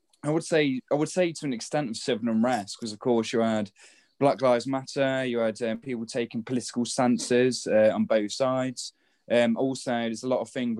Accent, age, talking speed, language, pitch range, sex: British, 10-29, 210 wpm, English, 115-135 Hz, male